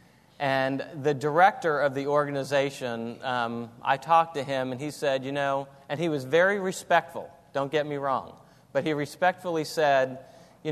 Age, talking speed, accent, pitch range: 40-59, 170 wpm, American, 135-165 Hz